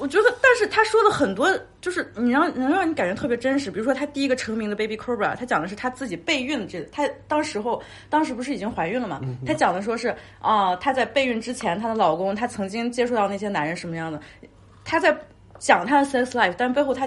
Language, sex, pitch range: Chinese, female, 195-295 Hz